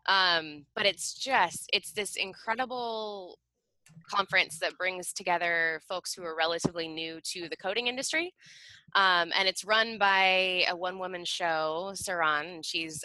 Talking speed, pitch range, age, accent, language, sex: 145 wpm, 155-195 Hz, 20-39, American, English, female